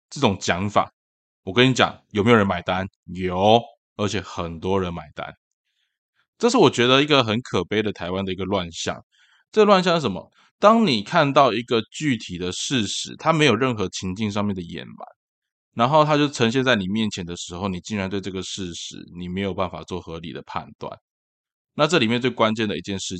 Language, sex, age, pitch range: Chinese, male, 20-39, 95-125 Hz